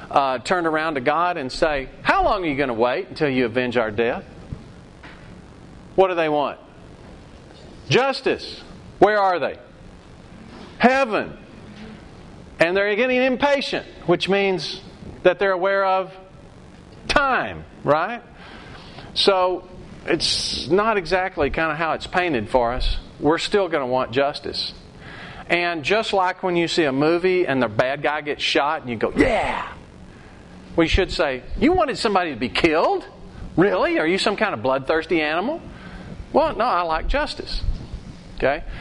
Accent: American